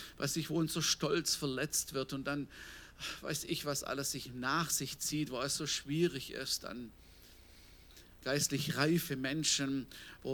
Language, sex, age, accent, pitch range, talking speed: German, male, 50-69, German, 125-150 Hz, 155 wpm